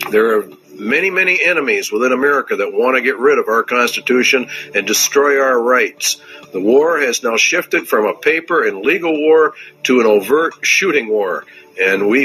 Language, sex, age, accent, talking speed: Dutch, male, 50-69, American, 180 wpm